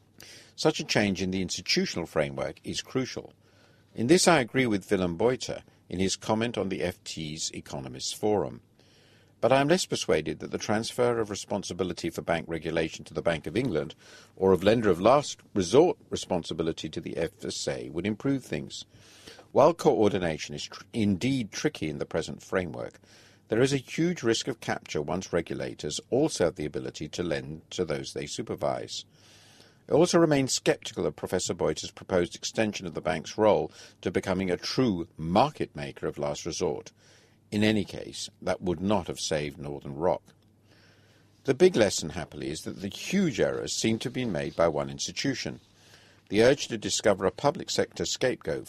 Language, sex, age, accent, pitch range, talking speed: English, male, 50-69, British, 90-115 Hz, 175 wpm